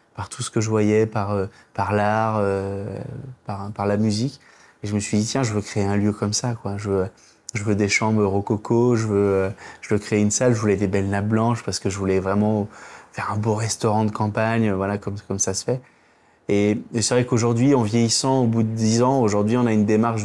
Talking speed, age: 240 wpm, 20-39